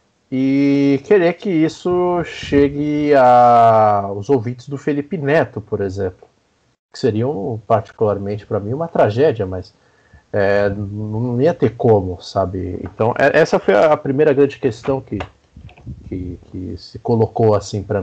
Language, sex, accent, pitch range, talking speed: Portuguese, male, Brazilian, 110-150 Hz, 135 wpm